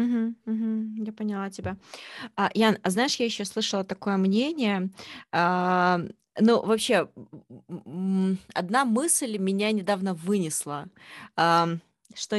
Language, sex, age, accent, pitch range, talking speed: Russian, female, 20-39, native, 180-230 Hz, 110 wpm